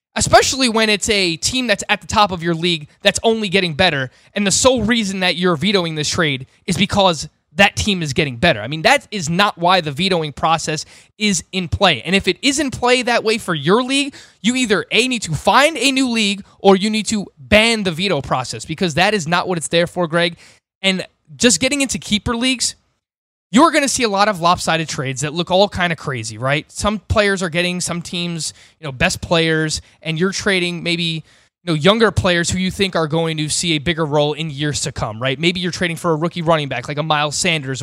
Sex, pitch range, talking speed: male, 160-215 Hz, 235 wpm